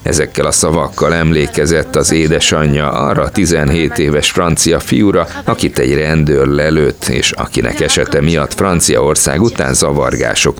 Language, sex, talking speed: Hungarian, male, 125 wpm